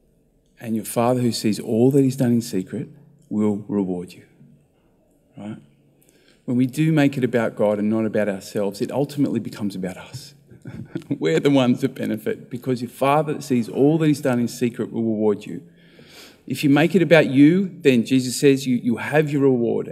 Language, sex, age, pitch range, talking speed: English, male, 30-49, 115-140 Hz, 195 wpm